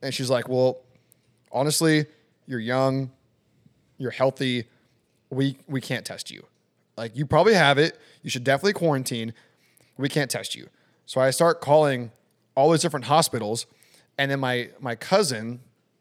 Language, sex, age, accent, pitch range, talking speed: English, male, 20-39, American, 120-145 Hz, 150 wpm